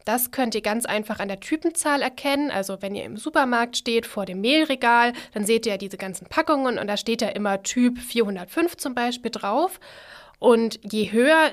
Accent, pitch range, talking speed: German, 195-245 Hz, 200 wpm